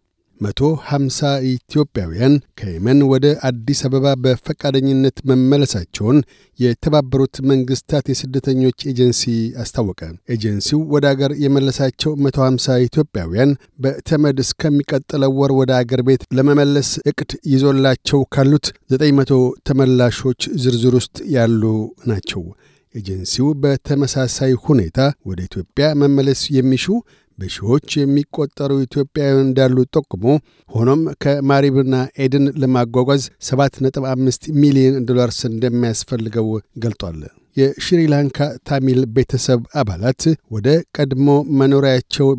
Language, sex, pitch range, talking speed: Amharic, male, 125-140 Hz, 90 wpm